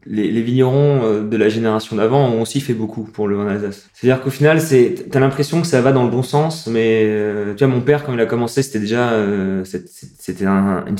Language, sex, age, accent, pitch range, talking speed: French, male, 20-39, French, 110-130 Hz, 240 wpm